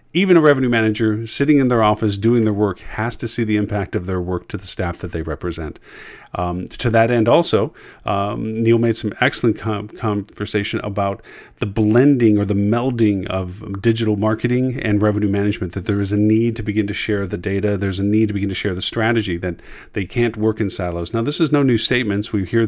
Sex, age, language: male, 40-59, English